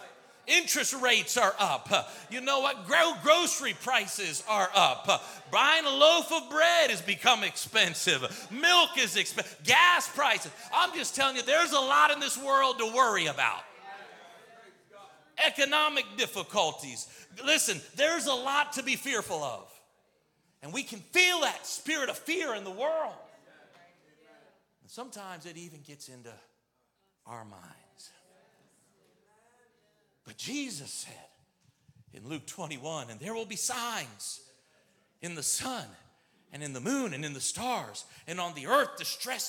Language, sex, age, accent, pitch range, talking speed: English, male, 40-59, American, 185-285 Hz, 140 wpm